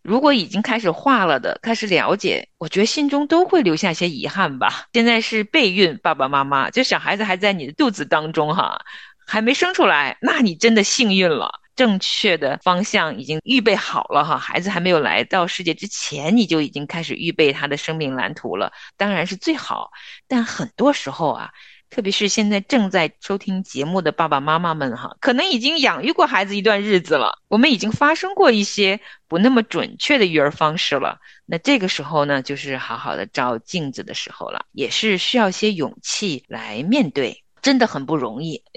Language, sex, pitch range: Chinese, female, 165-235 Hz